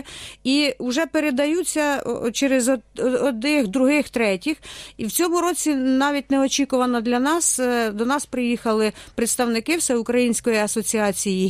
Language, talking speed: Ukrainian, 110 wpm